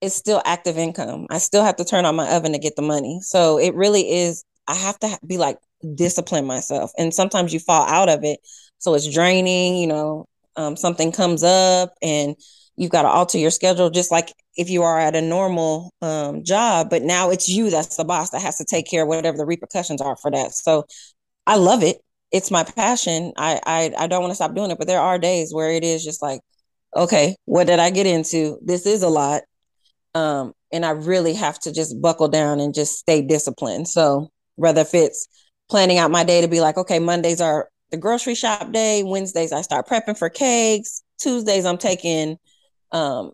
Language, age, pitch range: English, 20-39, 155-180 Hz